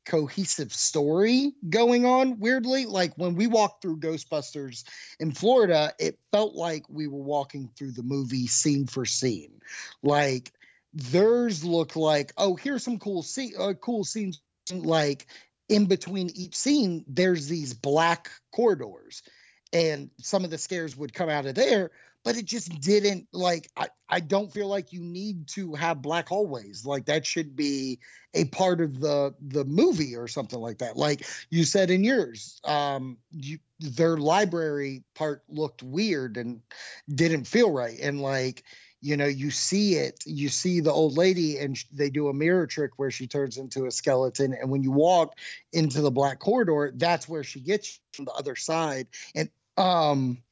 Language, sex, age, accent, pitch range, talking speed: English, male, 30-49, American, 140-185 Hz, 170 wpm